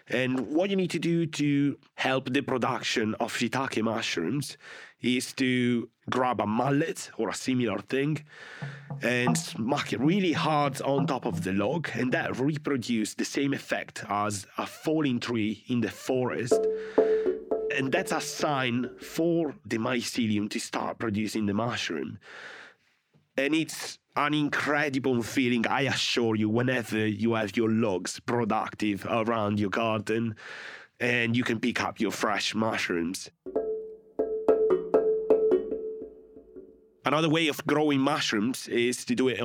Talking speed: 140 wpm